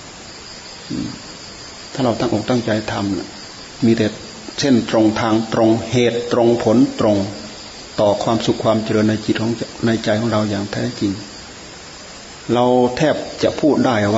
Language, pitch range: Thai, 105-125 Hz